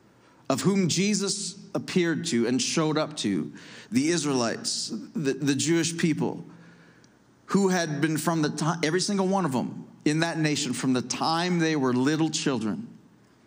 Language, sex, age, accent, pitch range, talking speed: English, male, 40-59, American, 140-175 Hz, 160 wpm